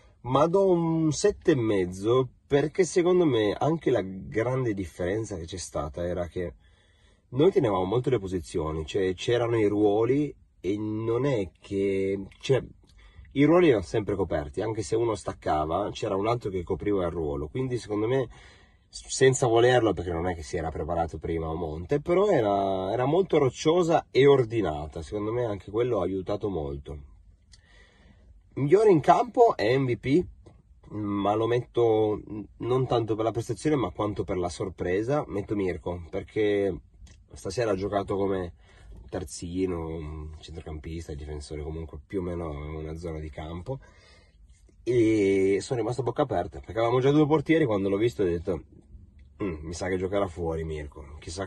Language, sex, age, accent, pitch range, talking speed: Italian, male, 30-49, native, 85-115 Hz, 160 wpm